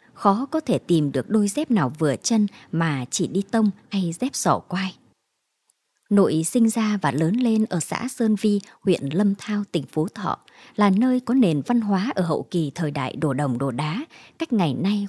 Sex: male